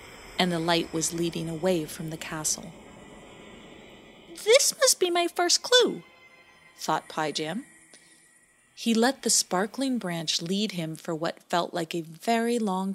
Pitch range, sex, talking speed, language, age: 170-280 Hz, female, 145 wpm, English, 40-59